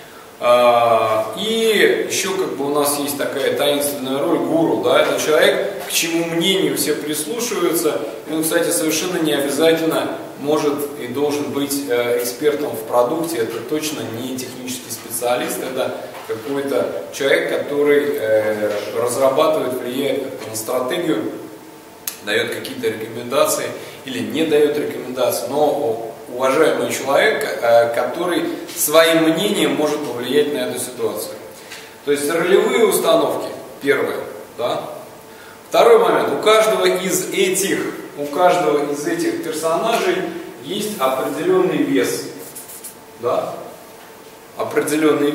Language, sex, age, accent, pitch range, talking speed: Russian, male, 20-39, native, 140-220 Hz, 115 wpm